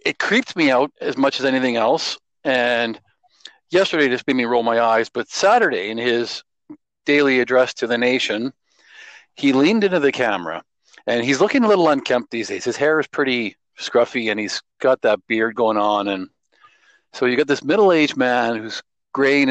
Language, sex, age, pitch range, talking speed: English, male, 40-59, 120-180 Hz, 185 wpm